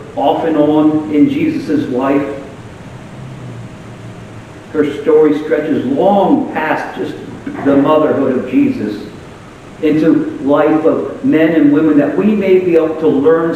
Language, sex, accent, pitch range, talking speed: English, male, American, 130-160 Hz, 130 wpm